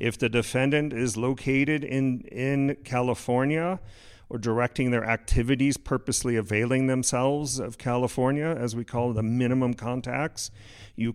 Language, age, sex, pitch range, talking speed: English, 40-59, male, 110-135 Hz, 130 wpm